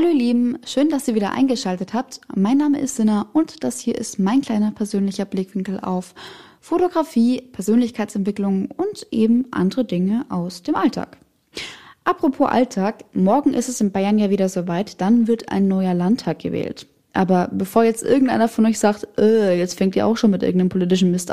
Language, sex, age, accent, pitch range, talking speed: German, female, 10-29, German, 195-255 Hz, 180 wpm